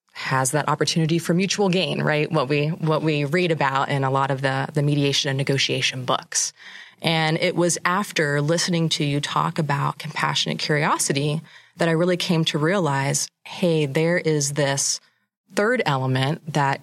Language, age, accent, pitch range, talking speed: English, 20-39, American, 140-170 Hz, 170 wpm